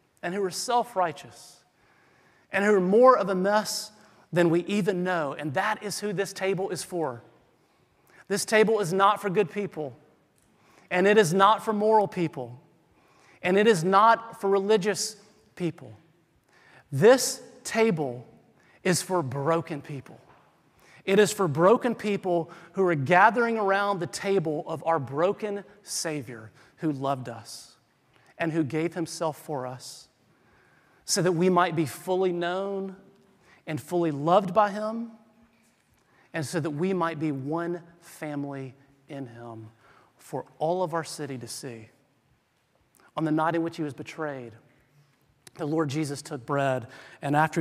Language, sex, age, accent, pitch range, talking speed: English, male, 40-59, American, 140-195 Hz, 150 wpm